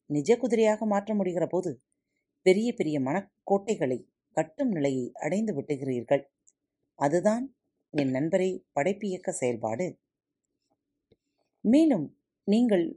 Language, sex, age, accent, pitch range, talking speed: Tamil, female, 30-49, native, 135-205 Hz, 90 wpm